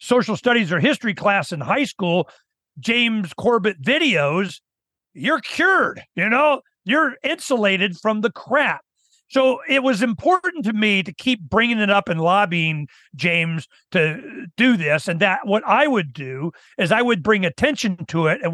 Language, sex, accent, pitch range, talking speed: English, male, American, 170-225 Hz, 165 wpm